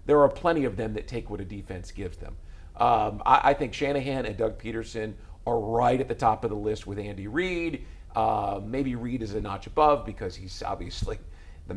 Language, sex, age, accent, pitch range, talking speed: English, male, 50-69, American, 95-140 Hz, 210 wpm